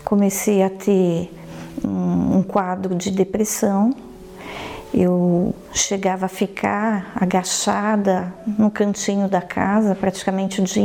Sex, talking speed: female, 105 wpm